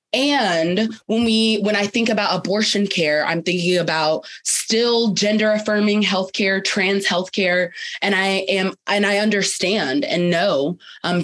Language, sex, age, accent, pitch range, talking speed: English, female, 20-39, American, 165-195 Hz, 150 wpm